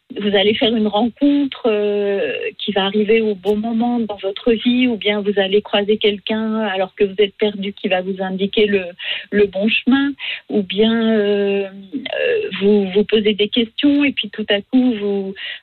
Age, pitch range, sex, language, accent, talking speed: 50-69, 205-260 Hz, female, French, French, 190 wpm